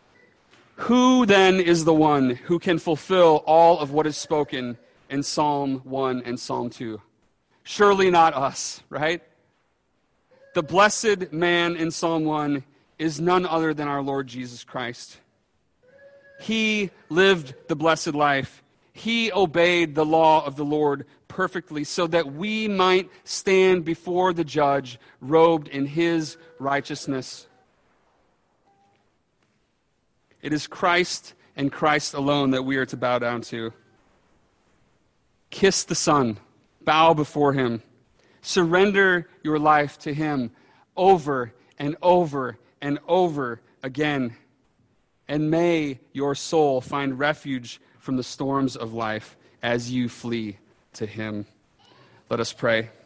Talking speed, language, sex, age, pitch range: 125 wpm, English, male, 30-49, 130-170 Hz